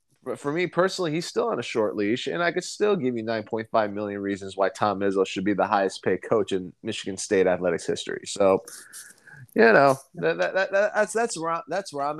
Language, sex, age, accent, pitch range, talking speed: English, male, 20-39, American, 110-155 Hz, 225 wpm